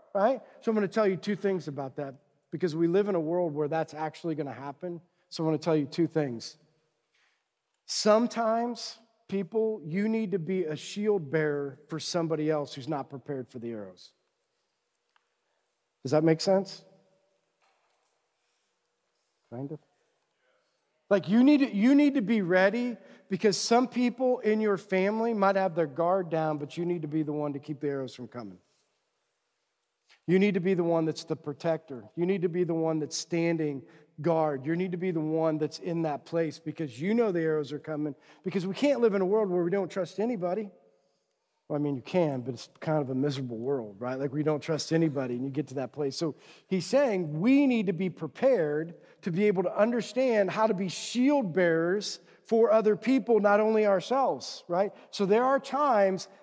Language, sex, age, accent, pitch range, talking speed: English, male, 40-59, American, 155-210 Hz, 200 wpm